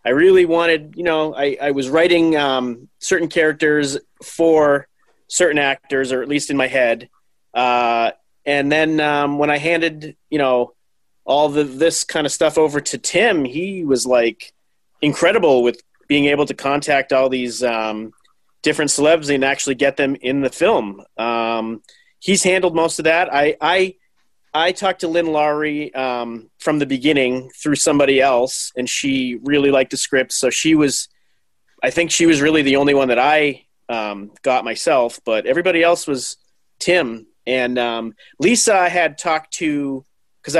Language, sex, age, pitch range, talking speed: English, male, 30-49, 130-160 Hz, 170 wpm